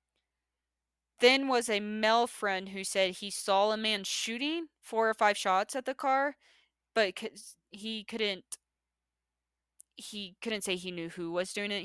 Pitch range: 170-230 Hz